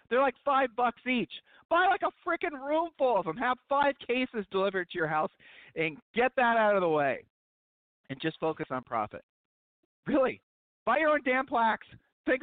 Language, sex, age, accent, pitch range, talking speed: English, male, 40-59, American, 140-225 Hz, 190 wpm